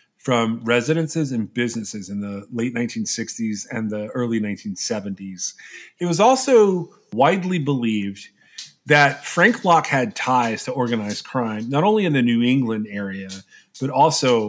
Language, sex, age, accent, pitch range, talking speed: English, male, 40-59, American, 115-165 Hz, 140 wpm